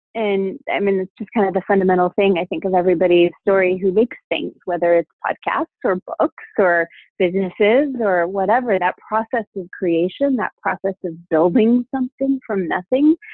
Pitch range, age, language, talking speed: 175-215 Hz, 20-39, English, 170 wpm